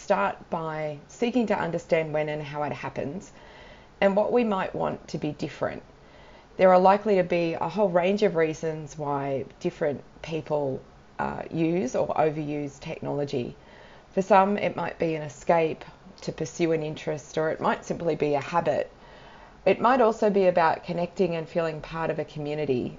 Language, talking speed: English, 170 wpm